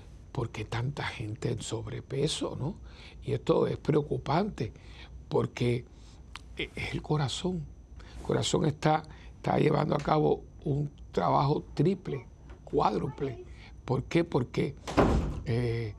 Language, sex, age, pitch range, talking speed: Spanish, male, 60-79, 120-155 Hz, 110 wpm